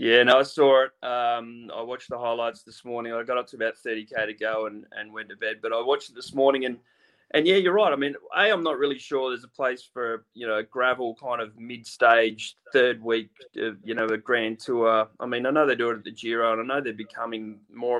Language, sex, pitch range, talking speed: English, male, 115-140 Hz, 255 wpm